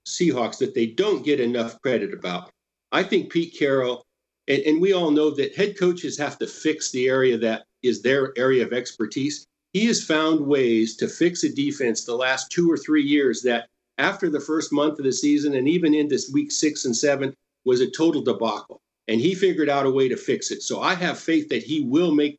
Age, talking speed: 50-69, 220 wpm